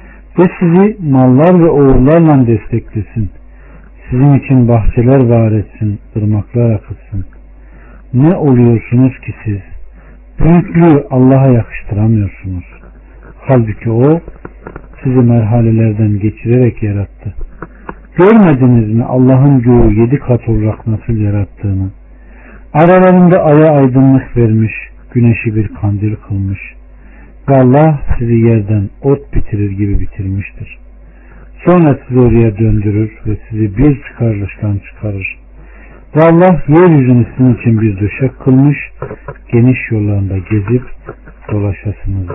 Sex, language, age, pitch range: male, Turkish, 60-79, 105-135 Hz